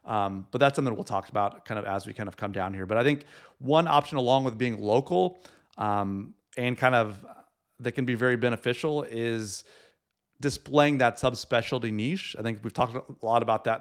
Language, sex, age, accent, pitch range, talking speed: English, male, 30-49, American, 105-135 Hz, 205 wpm